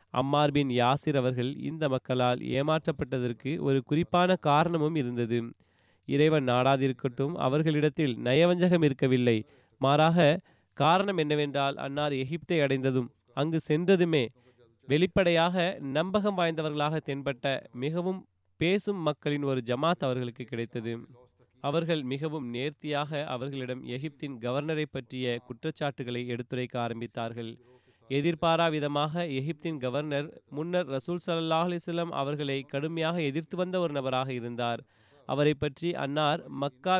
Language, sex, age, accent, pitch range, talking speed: Tamil, male, 30-49, native, 125-160 Hz, 100 wpm